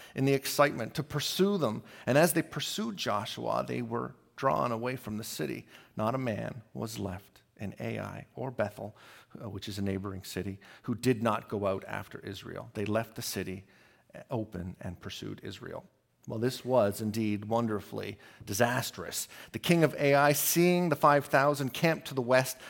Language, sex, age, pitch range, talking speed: English, male, 40-59, 110-145 Hz, 170 wpm